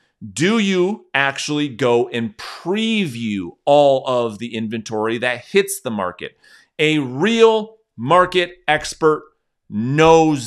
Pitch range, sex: 125-165 Hz, male